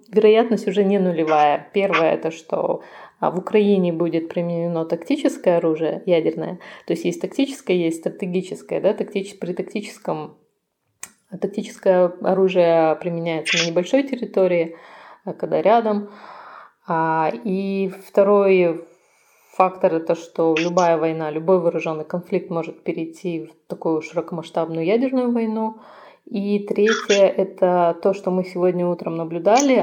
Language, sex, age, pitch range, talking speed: Russian, female, 20-39, 170-205 Hz, 120 wpm